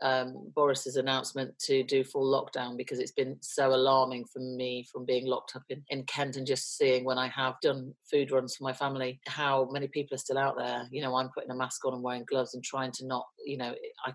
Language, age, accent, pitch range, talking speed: English, 40-59, British, 130-145 Hz, 240 wpm